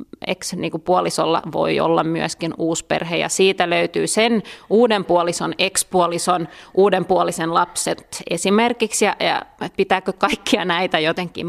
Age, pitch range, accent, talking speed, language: 30-49, 175-210 Hz, native, 115 wpm, Finnish